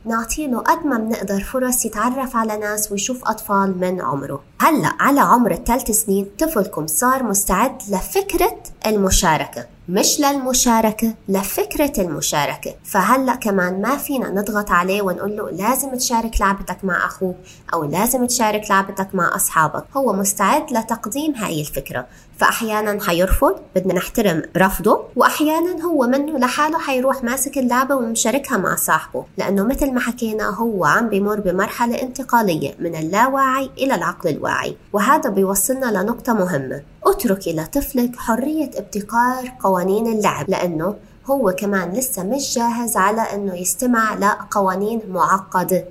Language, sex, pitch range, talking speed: Arabic, female, 185-245 Hz, 130 wpm